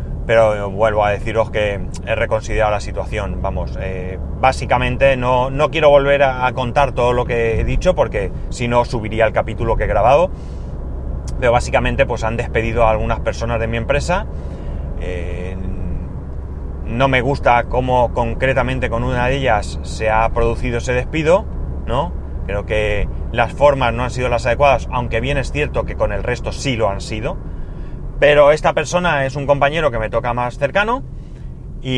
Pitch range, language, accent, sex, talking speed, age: 95-135 Hz, Spanish, Spanish, male, 175 wpm, 30-49